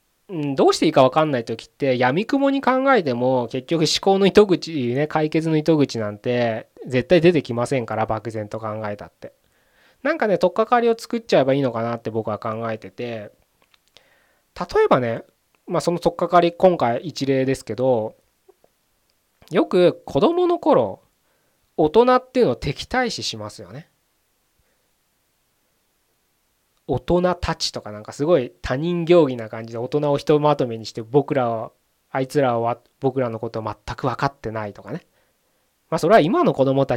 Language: Japanese